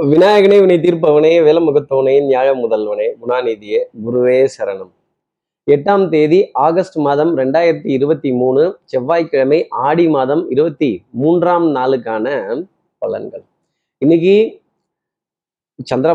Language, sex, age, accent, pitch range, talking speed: Tamil, male, 30-49, native, 130-175 Hz, 95 wpm